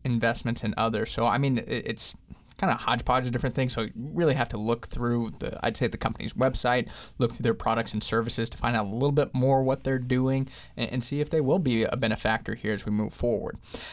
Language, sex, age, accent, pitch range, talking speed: English, male, 20-39, American, 125-160 Hz, 235 wpm